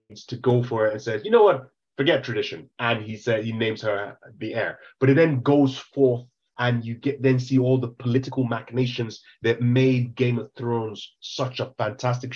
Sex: male